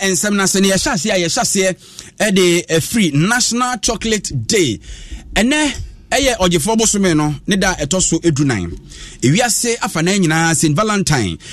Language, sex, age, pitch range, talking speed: English, male, 30-49, 145-190 Hz, 145 wpm